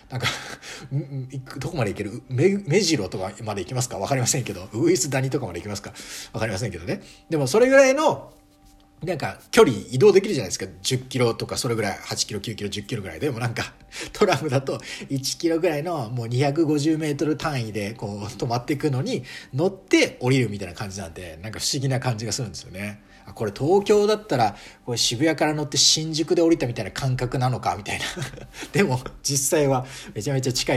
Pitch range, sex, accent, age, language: 100-155 Hz, male, native, 40-59, Japanese